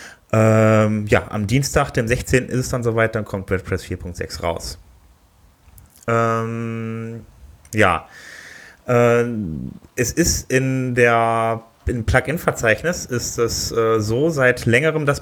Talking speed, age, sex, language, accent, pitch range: 125 wpm, 30-49, male, German, German, 95-115 Hz